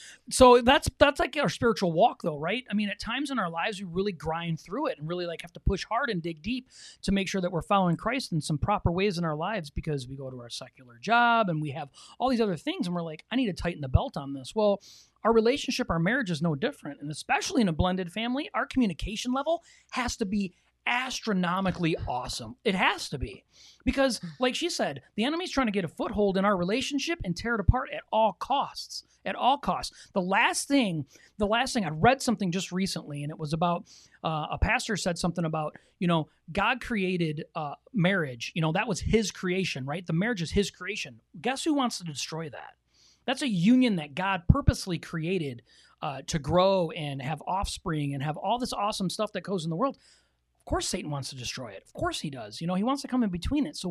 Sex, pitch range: male, 160-230 Hz